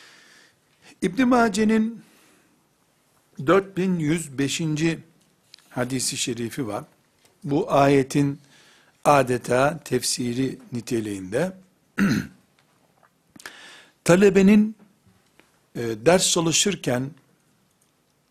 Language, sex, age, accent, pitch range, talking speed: Turkish, male, 60-79, native, 140-180 Hz, 45 wpm